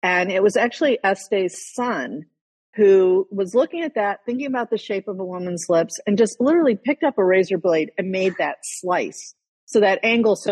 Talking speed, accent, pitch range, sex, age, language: 200 wpm, American, 170-225 Hz, female, 50-69, English